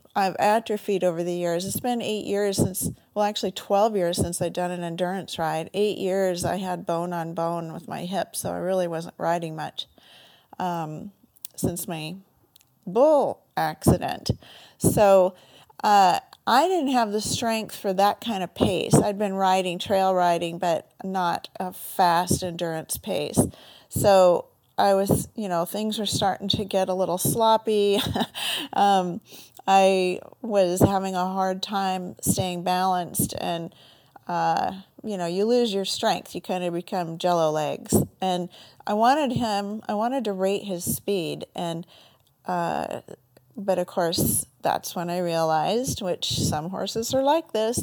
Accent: American